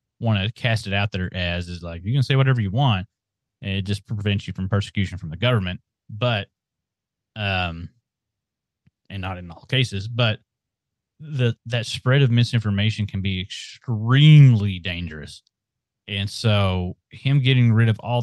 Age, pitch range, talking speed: 30-49, 95-120 Hz, 160 wpm